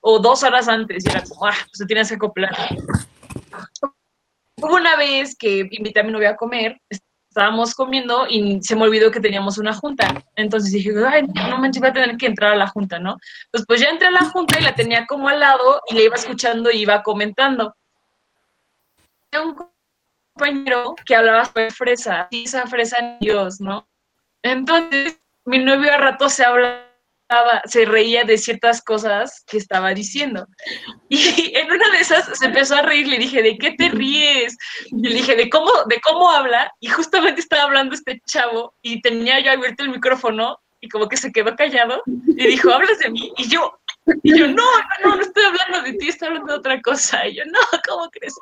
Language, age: Spanish, 20-39